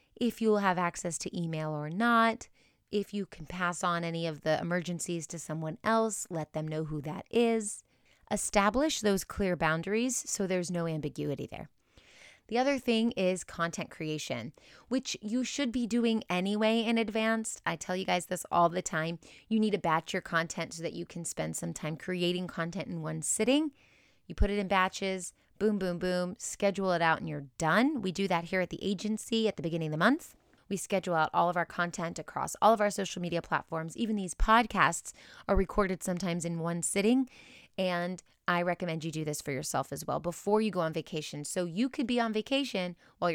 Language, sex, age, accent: English, female, 30-49, American